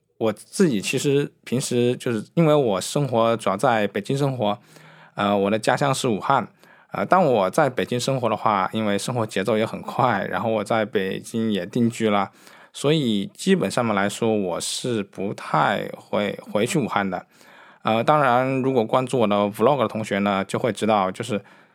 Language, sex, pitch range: Chinese, male, 100-125 Hz